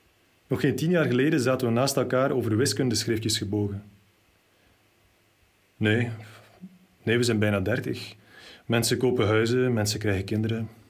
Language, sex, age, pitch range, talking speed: Dutch, male, 30-49, 100-125 Hz, 130 wpm